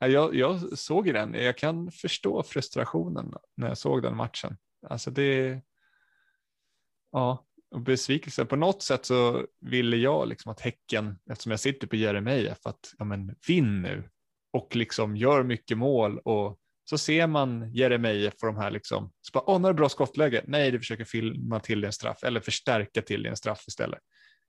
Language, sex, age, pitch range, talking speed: Swedish, male, 20-39, 110-140 Hz, 170 wpm